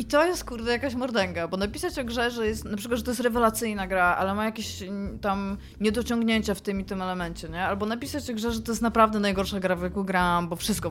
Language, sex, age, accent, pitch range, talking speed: Polish, female, 20-39, native, 170-230 Hz, 250 wpm